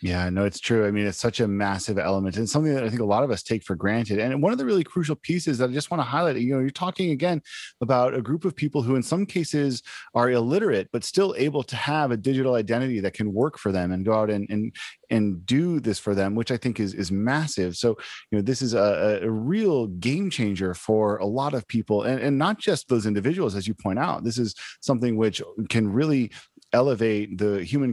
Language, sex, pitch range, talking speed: English, male, 105-135 Hz, 245 wpm